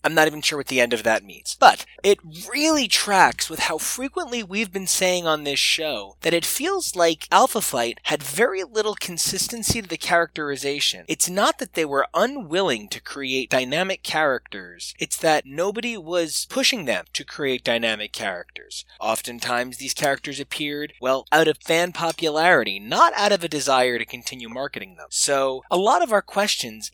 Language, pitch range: English, 130-185 Hz